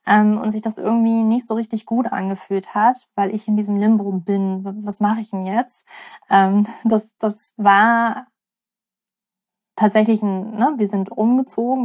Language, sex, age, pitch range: German, female, 20-39, 210-245 Hz